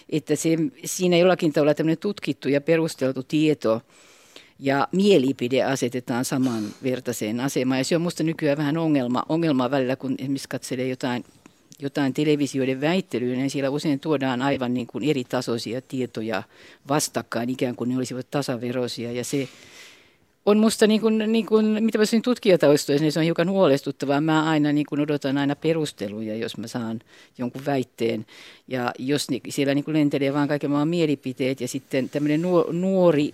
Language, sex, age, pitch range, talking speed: Finnish, female, 50-69, 130-170 Hz, 145 wpm